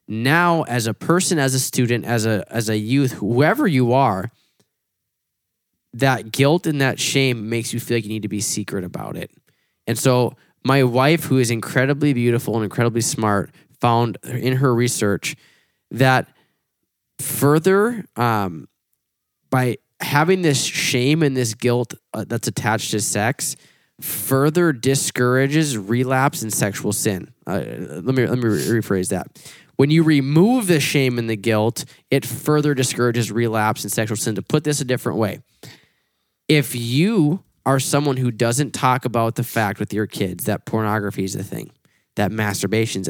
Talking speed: 160 wpm